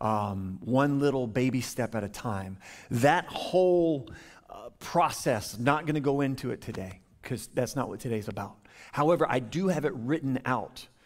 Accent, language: American, English